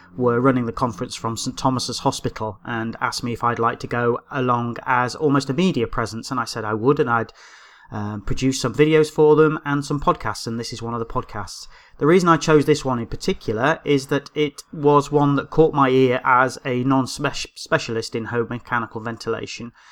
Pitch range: 115-140 Hz